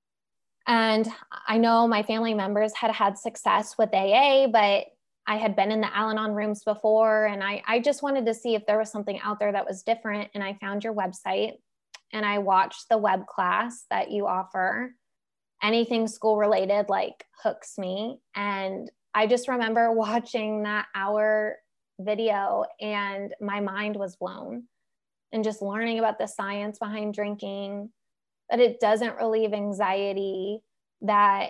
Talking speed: 160 wpm